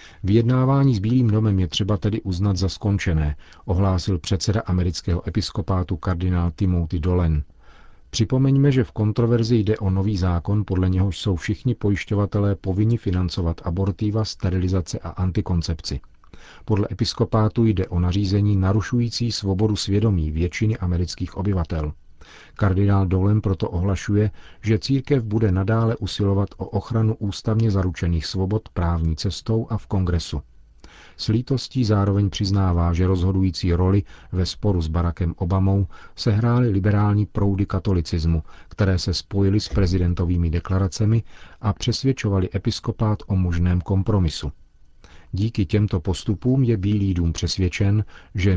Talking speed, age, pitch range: 125 wpm, 40-59, 90-105 Hz